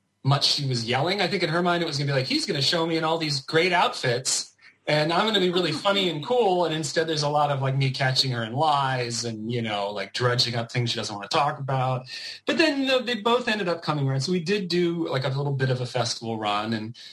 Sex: male